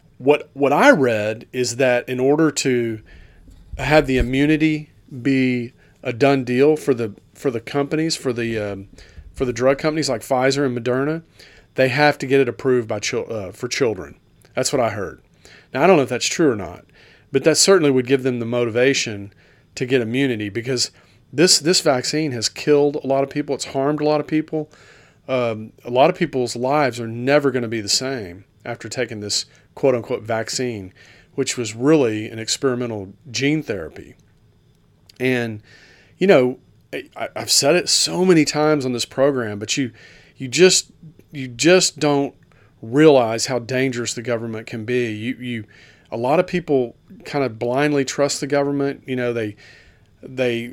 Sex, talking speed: male, 180 wpm